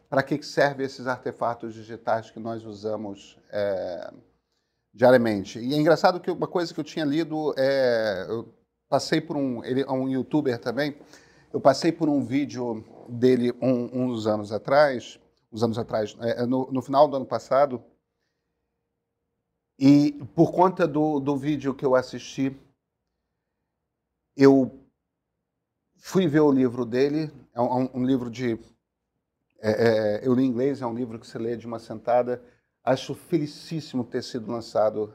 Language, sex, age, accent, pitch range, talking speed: Portuguese, male, 40-59, Brazilian, 120-145 Hz, 155 wpm